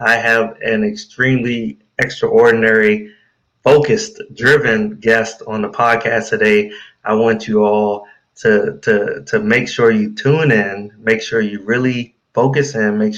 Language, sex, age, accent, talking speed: English, male, 20-39, American, 135 wpm